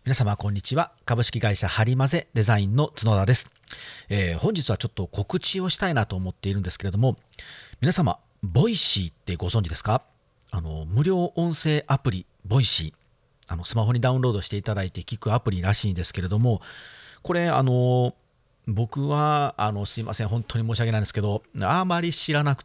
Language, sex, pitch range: Japanese, male, 100-135 Hz